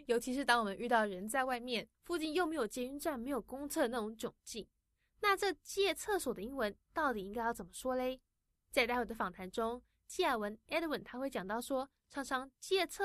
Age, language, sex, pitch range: 10-29, English, female, 215-270 Hz